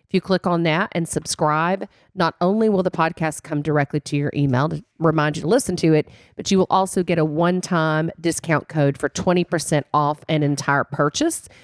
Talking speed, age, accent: 200 wpm, 40-59, American